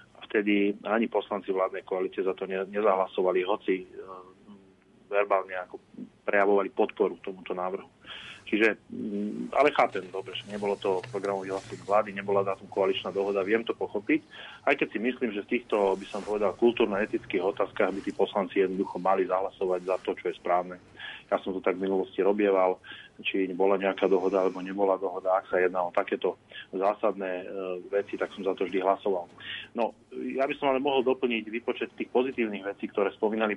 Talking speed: 175 wpm